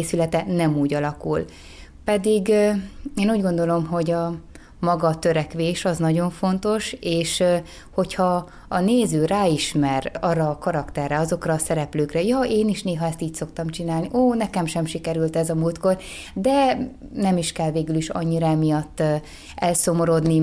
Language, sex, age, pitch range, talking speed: Hungarian, female, 20-39, 160-190 Hz, 145 wpm